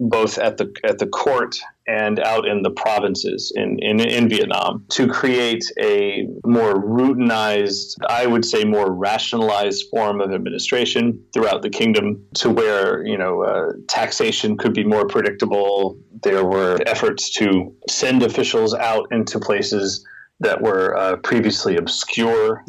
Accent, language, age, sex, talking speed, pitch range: American, English, 30-49, male, 145 wpm, 100-130 Hz